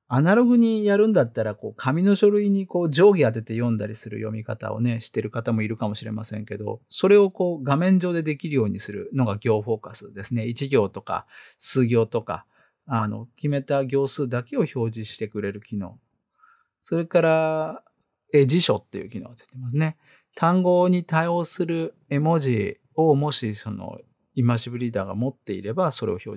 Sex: male